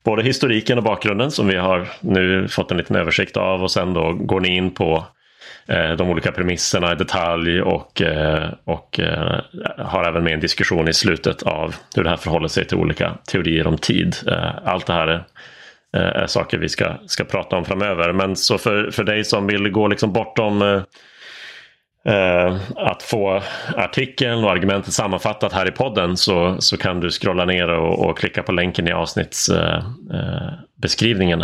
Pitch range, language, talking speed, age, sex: 90-105 Hz, Swedish, 180 wpm, 30-49, male